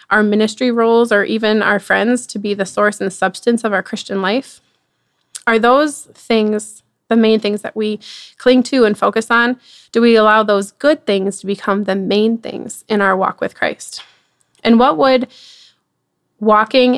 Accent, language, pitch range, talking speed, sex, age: American, English, 205-235 Hz, 175 wpm, female, 20-39